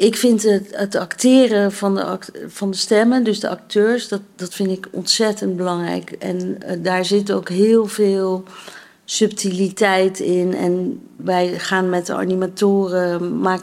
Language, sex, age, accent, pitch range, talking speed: Dutch, female, 40-59, Dutch, 170-200 Hz, 160 wpm